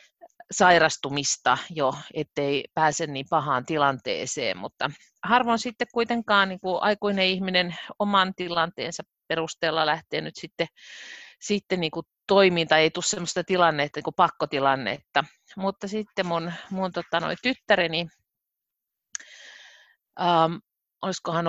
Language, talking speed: Finnish, 105 wpm